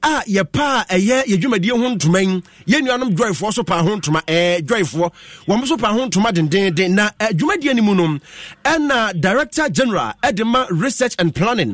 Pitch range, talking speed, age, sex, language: 190-265 Hz, 190 wpm, 30-49, male, English